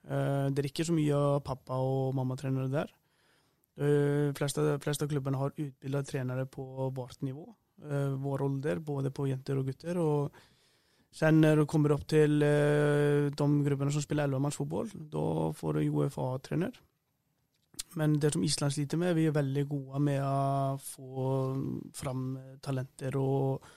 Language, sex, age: English, male, 20-39